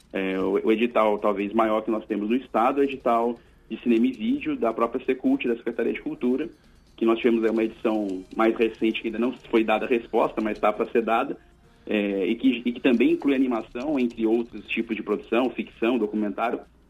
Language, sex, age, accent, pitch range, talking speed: Portuguese, male, 40-59, Brazilian, 110-155 Hz, 205 wpm